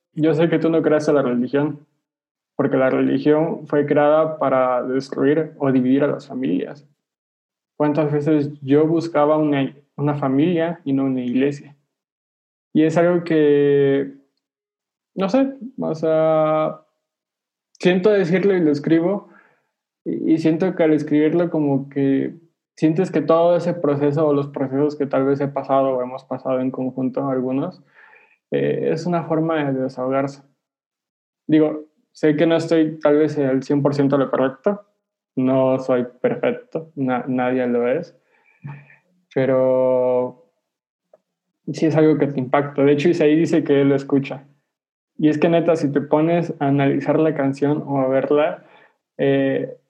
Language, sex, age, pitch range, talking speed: Spanish, male, 20-39, 135-160 Hz, 150 wpm